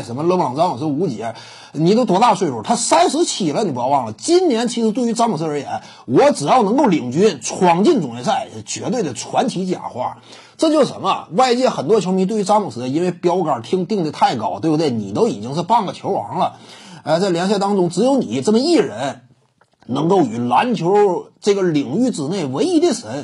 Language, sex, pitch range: Chinese, male, 155-250 Hz